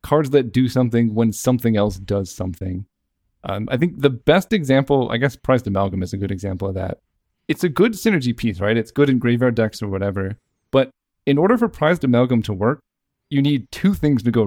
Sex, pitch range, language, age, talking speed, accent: male, 105-140 Hz, English, 30-49, 215 wpm, American